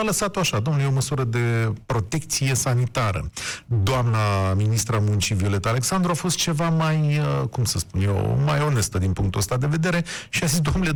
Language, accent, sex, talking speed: Romanian, native, male, 185 wpm